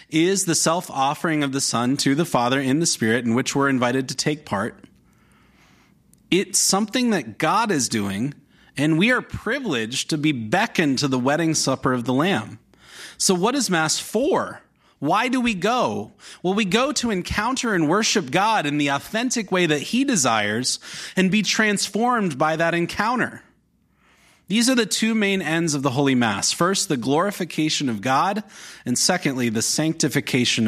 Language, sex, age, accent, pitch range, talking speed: English, male, 30-49, American, 125-185 Hz, 170 wpm